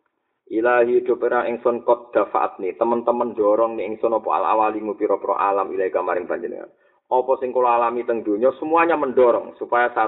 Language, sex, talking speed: Indonesian, male, 165 wpm